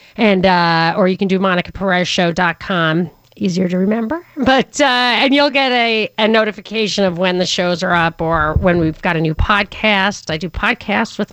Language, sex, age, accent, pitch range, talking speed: English, female, 40-59, American, 195-255 Hz, 195 wpm